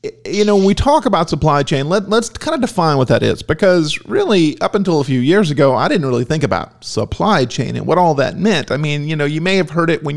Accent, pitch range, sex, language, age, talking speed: American, 135-180 Hz, male, English, 40-59, 270 wpm